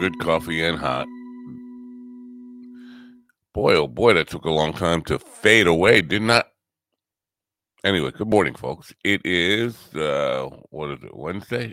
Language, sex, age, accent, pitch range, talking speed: English, male, 50-69, American, 80-110 Hz, 145 wpm